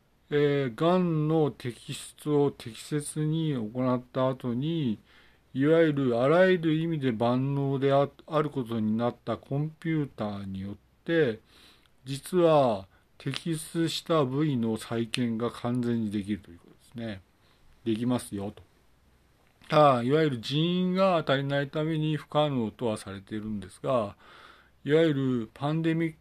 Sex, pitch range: male, 110-155 Hz